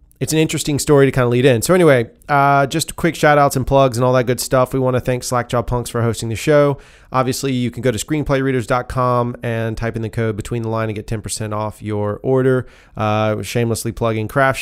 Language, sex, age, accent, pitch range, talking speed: English, male, 30-49, American, 110-130 Hz, 240 wpm